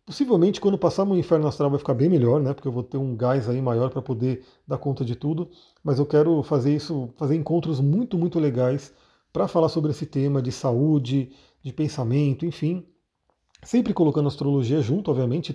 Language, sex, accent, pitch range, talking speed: Portuguese, male, Brazilian, 135-170 Hz, 195 wpm